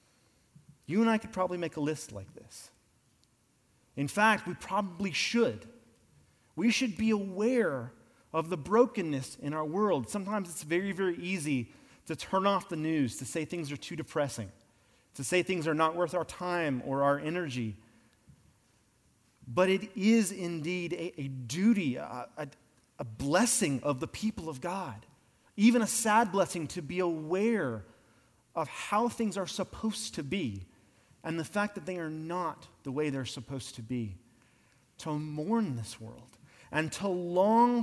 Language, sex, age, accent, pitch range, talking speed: English, male, 30-49, American, 125-195 Hz, 160 wpm